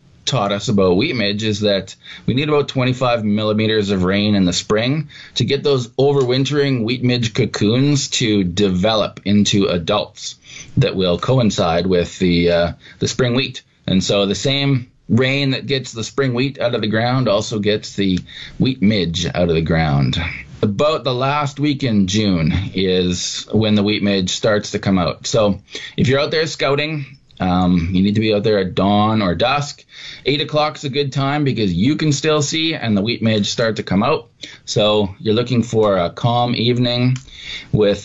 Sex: male